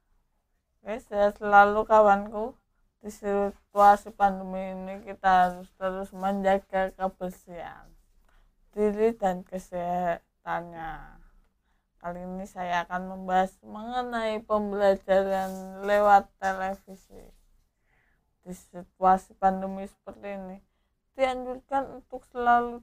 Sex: female